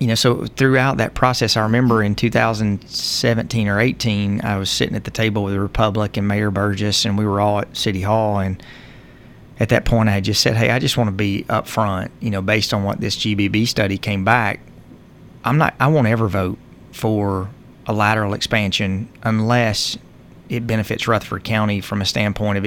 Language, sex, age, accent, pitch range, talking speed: English, male, 30-49, American, 100-115 Hz, 200 wpm